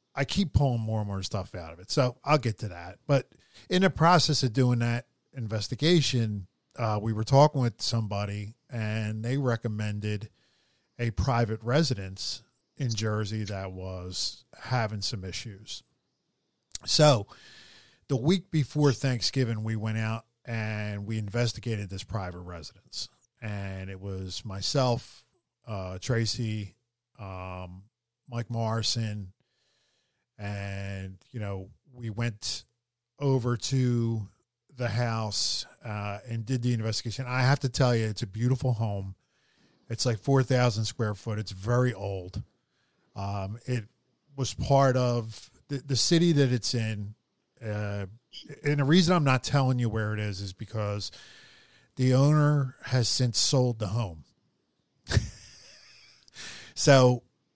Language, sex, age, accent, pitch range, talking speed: English, male, 40-59, American, 105-130 Hz, 135 wpm